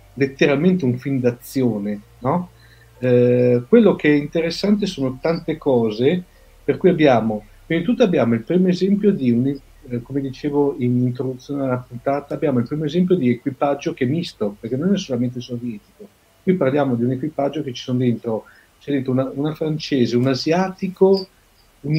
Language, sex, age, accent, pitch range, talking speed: Italian, male, 50-69, native, 120-150 Hz, 175 wpm